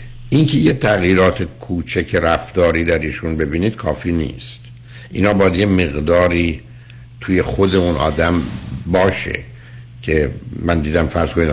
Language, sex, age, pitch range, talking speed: Persian, male, 60-79, 80-120 Hz, 130 wpm